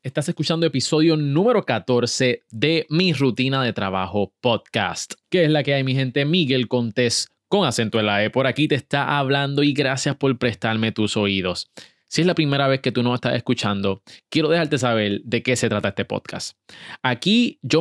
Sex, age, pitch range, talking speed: male, 20-39, 110-150 Hz, 190 wpm